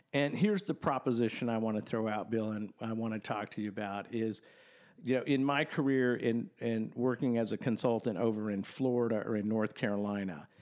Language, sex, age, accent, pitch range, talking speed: English, male, 50-69, American, 105-140 Hz, 210 wpm